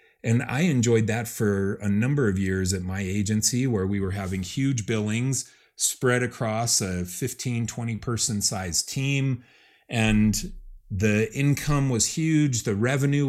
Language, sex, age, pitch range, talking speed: English, male, 30-49, 95-120 Hz, 150 wpm